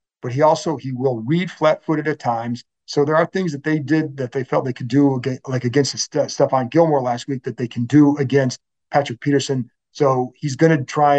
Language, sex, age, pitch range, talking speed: English, male, 50-69, 130-160 Hz, 225 wpm